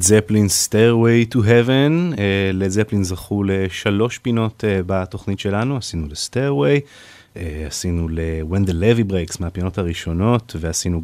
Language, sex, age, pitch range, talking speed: English, male, 30-49, 90-115 Hz, 130 wpm